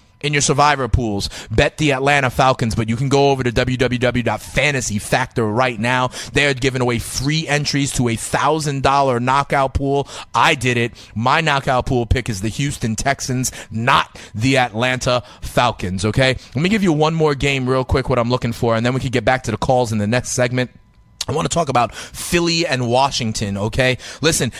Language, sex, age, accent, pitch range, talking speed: English, male, 30-49, American, 120-140 Hz, 200 wpm